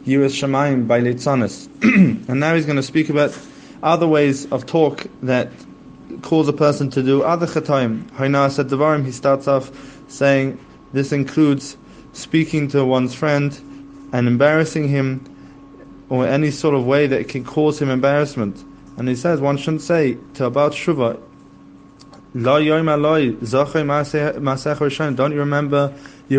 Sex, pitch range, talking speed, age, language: male, 135-150 Hz, 130 wpm, 20-39, English